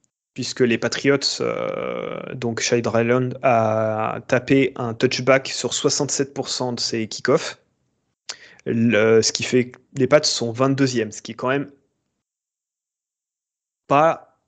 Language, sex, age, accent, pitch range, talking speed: French, male, 20-39, French, 115-135 Hz, 125 wpm